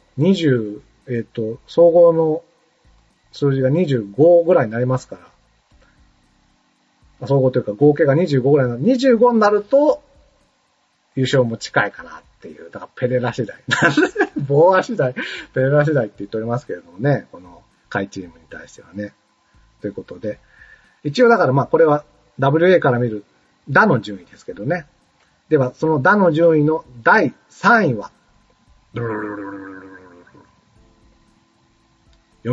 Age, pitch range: 40-59, 115-170 Hz